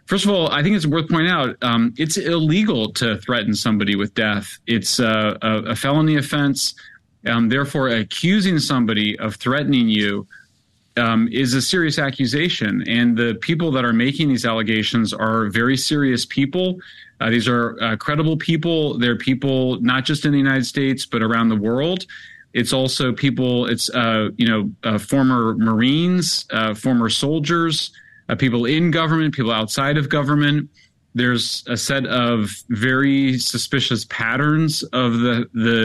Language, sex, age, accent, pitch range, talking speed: English, male, 30-49, American, 120-150 Hz, 160 wpm